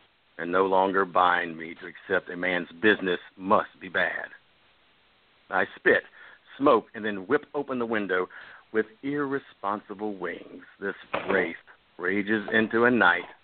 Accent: American